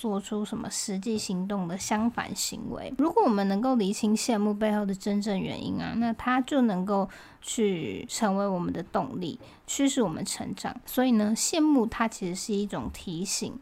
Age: 20-39